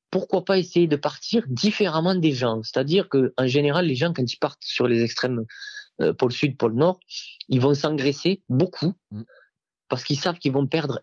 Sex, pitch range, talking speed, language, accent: male, 120-155 Hz, 185 wpm, French, French